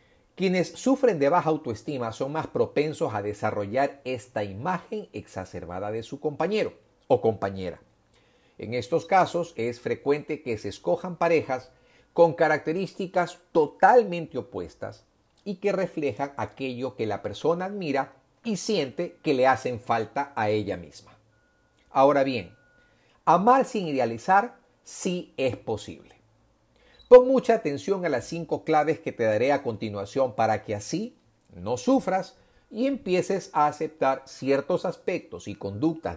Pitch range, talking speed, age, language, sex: 115-175 Hz, 135 wpm, 50-69, Spanish, male